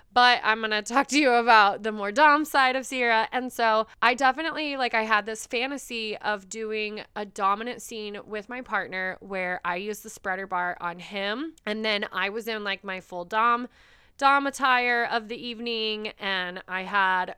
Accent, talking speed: American, 195 wpm